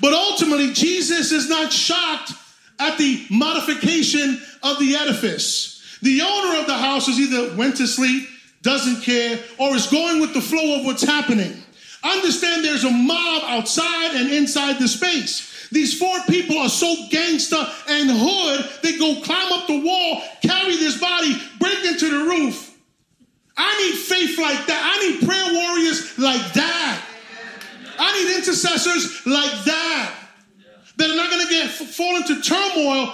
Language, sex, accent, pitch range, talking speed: English, male, American, 230-315 Hz, 160 wpm